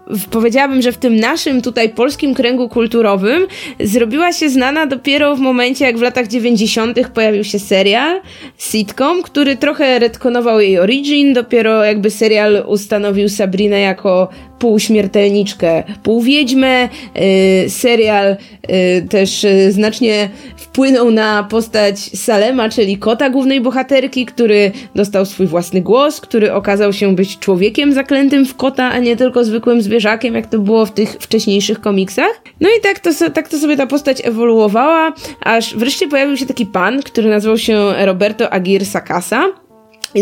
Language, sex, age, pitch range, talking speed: Polish, female, 20-39, 205-270 Hz, 145 wpm